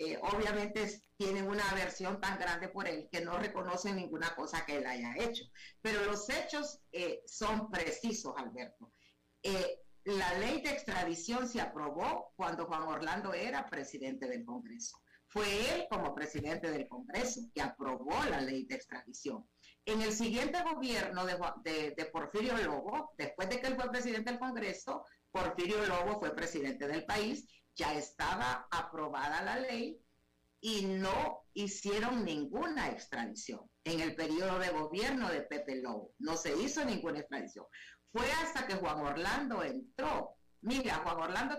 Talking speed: 155 wpm